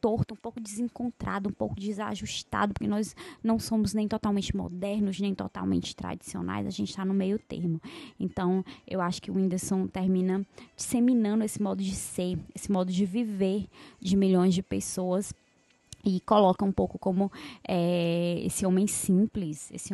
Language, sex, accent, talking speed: Portuguese, female, Brazilian, 155 wpm